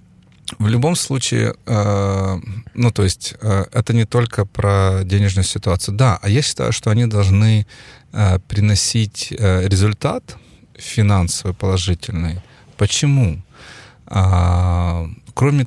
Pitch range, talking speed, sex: 95-115 Hz, 95 wpm, male